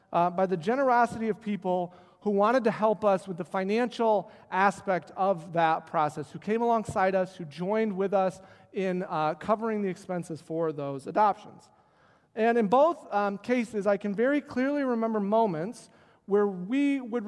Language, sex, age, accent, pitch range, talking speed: English, male, 40-59, American, 185-230 Hz, 165 wpm